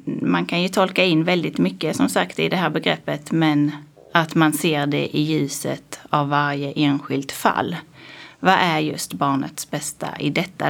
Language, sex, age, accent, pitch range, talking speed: Swedish, female, 30-49, native, 155-205 Hz, 175 wpm